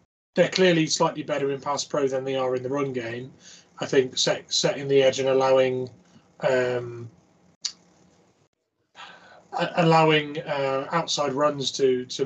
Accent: British